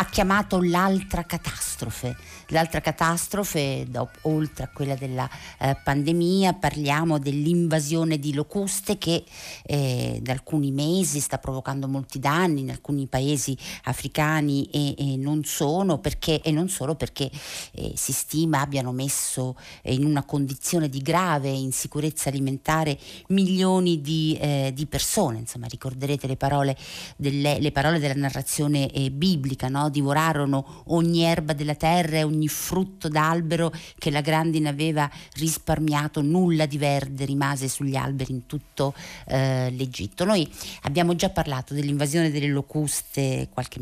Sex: female